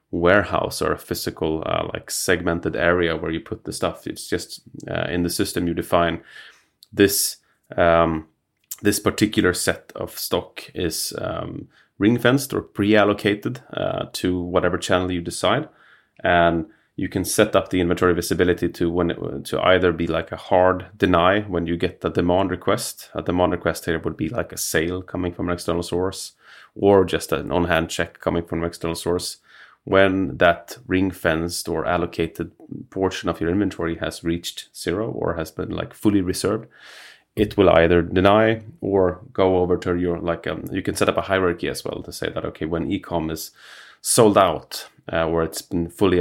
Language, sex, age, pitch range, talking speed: English, male, 30-49, 85-95 Hz, 185 wpm